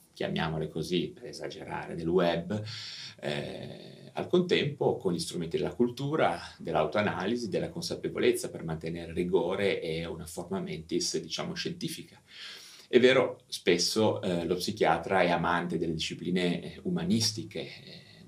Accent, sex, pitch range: native, male, 80-115 Hz